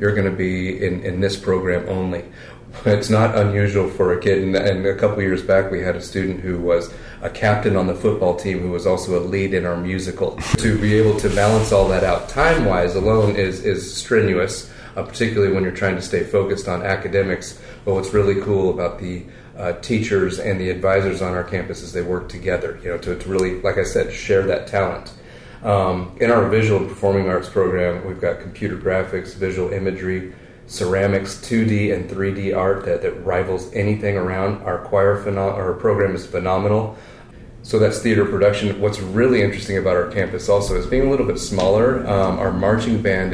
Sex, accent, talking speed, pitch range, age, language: male, American, 200 wpm, 95-105 Hz, 30-49, English